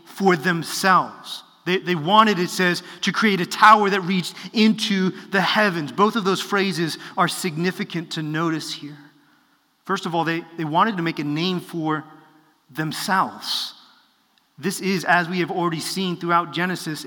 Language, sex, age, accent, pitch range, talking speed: English, male, 30-49, American, 165-200 Hz, 160 wpm